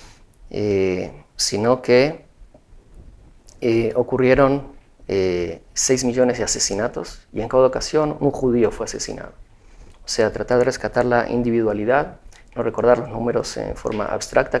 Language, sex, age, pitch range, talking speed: Spanish, male, 40-59, 105-130 Hz, 130 wpm